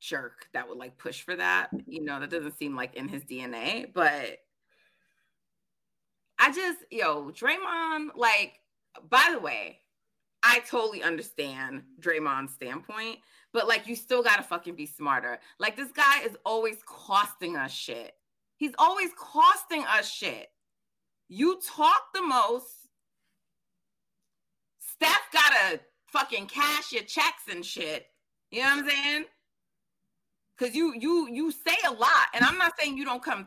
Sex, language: female, English